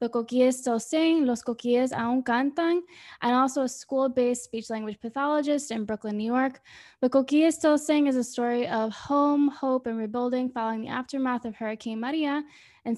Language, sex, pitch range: English, female, 230-270 Hz